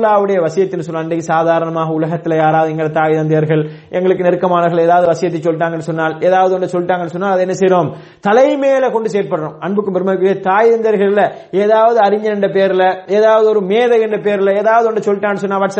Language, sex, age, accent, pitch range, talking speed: English, male, 30-49, Indian, 180-230 Hz, 140 wpm